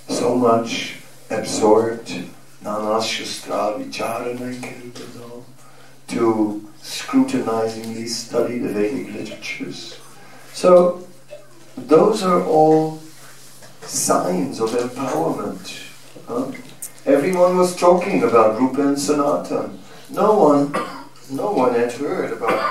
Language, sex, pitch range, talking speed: English, male, 105-140 Hz, 80 wpm